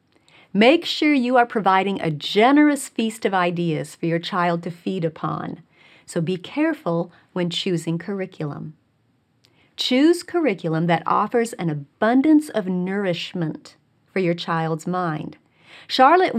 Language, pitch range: English, 160-245 Hz